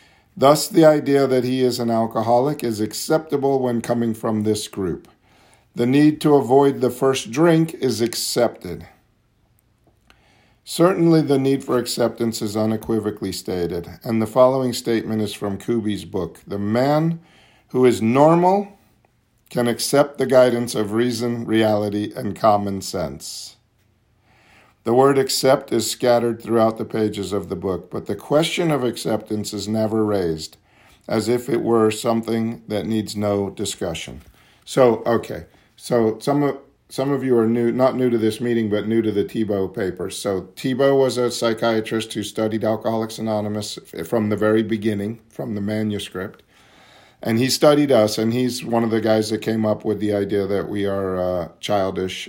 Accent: American